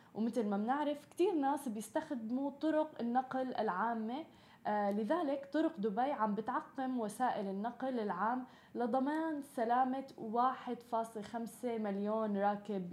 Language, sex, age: Arabic, female, 20-39